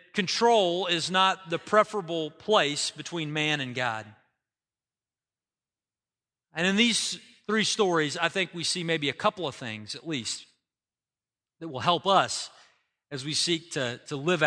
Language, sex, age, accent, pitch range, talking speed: English, male, 40-59, American, 140-205 Hz, 150 wpm